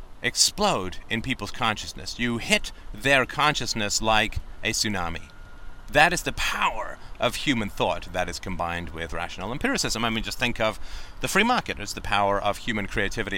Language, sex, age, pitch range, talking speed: English, male, 40-59, 85-105 Hz, 170 wpm